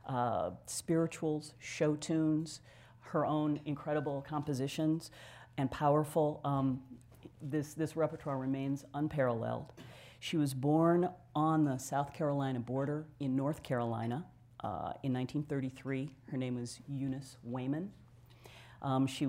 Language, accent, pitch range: English, American, 130-145 Hz